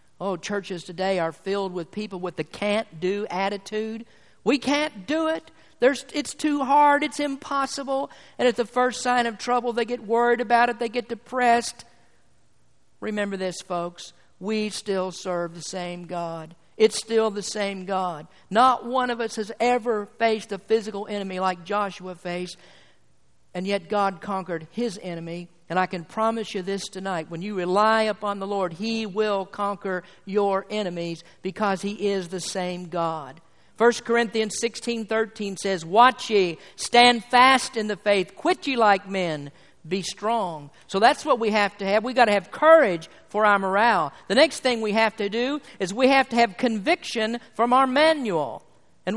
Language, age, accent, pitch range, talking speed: English, 50-69, American, 185-240 Hz, 175 wpm